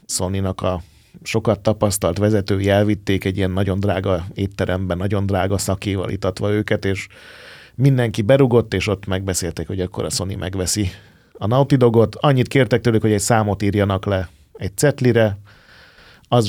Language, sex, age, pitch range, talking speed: Hungarian, male, 30-49, 90-110 Hz, 145 wpm